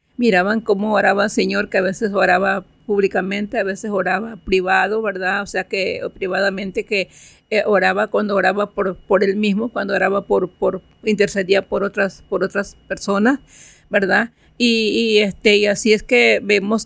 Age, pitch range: 50-69, 200-235 Hz